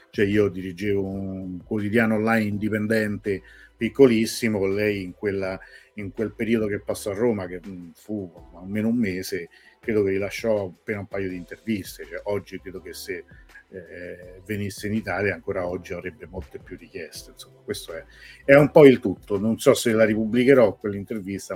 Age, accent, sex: 50-69, native, male